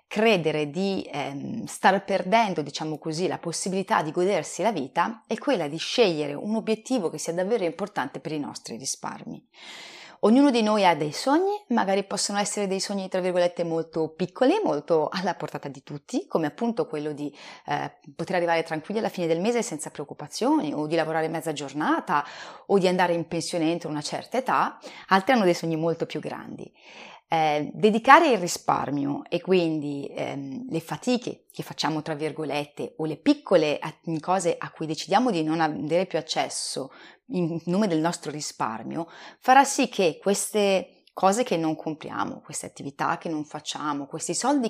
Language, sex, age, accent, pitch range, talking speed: Italian, female, 30-49, native, 155-215 Hz, 170 wpm